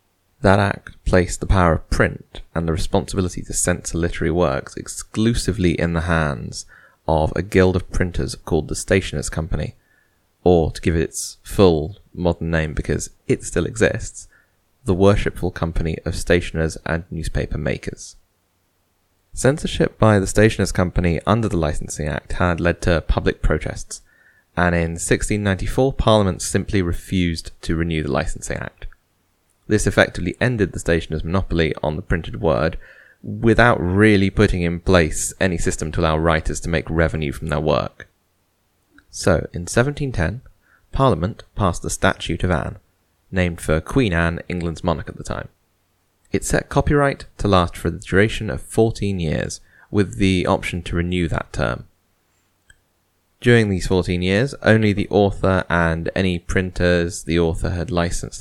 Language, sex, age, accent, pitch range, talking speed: English, male, 20-39, British, 85-100 Hz, 150 wpm